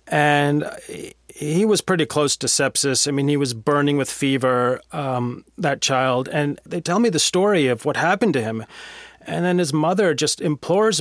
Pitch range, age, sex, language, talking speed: 145-190 Hz, 30-49, male, English, 185 wpm